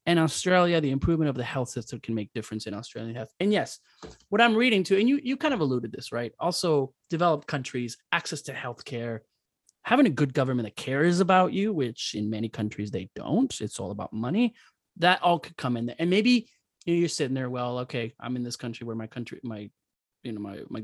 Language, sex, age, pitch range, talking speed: English, male, 20-39, 115-150 Hz, 230 wpm